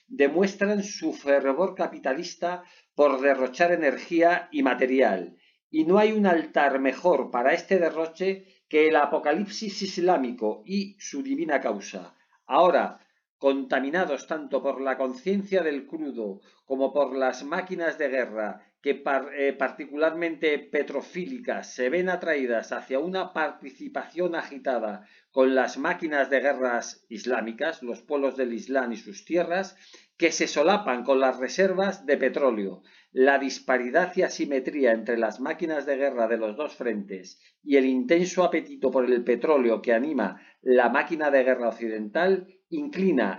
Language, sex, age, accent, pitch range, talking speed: Spanish, male, 50-69, Spanish, 130-180 Hz, 135 wpm